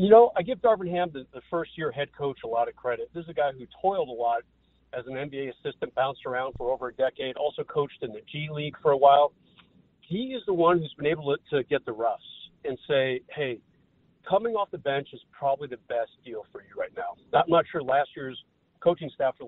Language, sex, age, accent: English, male, 40-59, American